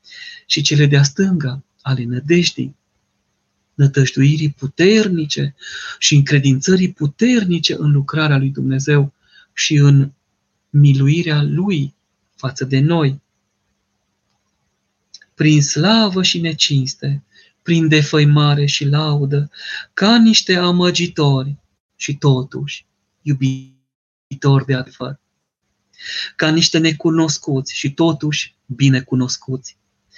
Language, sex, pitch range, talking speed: Romanian, male, 135-175 Hz, 90 wpm